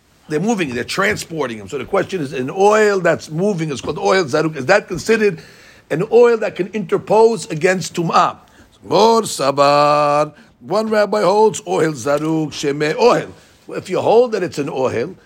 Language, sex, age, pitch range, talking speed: English, male, 60-79, 150-195 Hz, 180 wpm